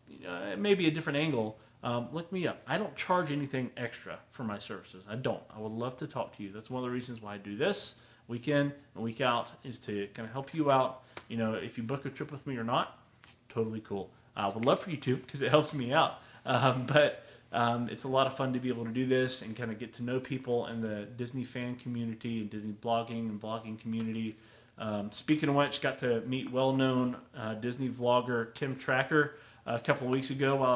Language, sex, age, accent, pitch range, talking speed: English, male, 30-49, American, 115-145 Hz, 245 wpm